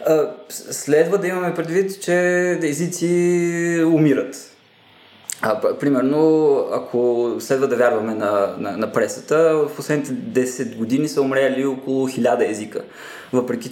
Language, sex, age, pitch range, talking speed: Bulgarian, male, 20-39, 125-175 Hz, 120 wpm